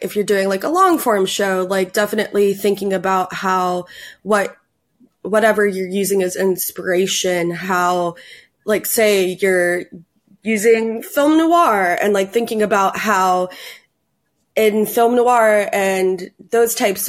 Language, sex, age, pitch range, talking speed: English, female, 20-39, 185-210 Hz, 130 wpm